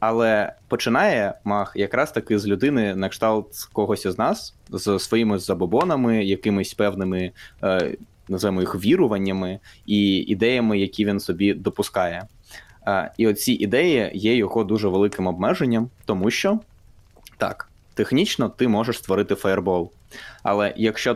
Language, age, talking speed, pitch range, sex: Ukrainian, 20-39, 125 wpm, 95-110 Hz, male